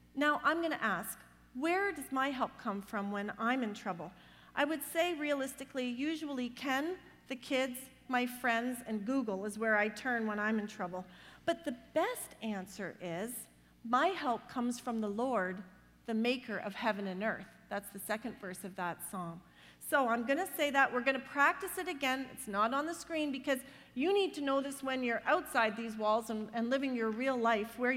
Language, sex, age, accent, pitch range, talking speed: English, female, 40-59, American, 220-280 Hz, 200 wpm